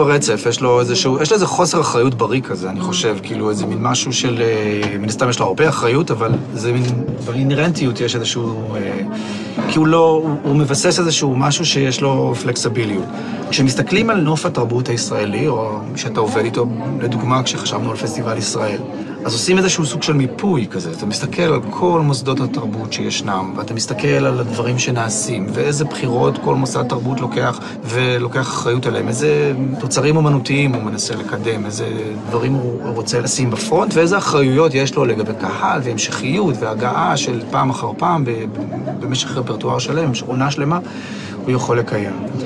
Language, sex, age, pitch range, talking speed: Hebrew, male, 30-49, 115-145 Hz, 160 wpm